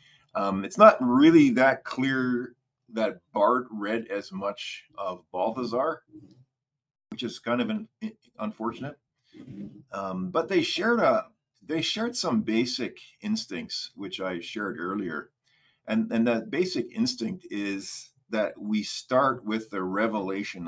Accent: American